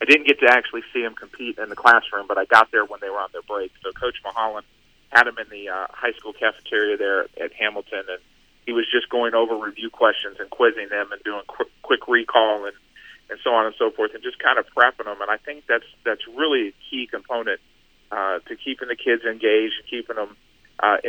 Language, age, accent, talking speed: English, 40-59, American, 235 wpm